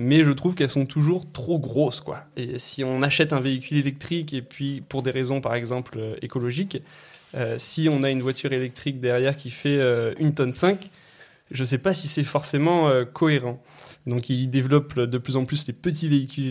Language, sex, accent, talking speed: French, male, French, 210 wpm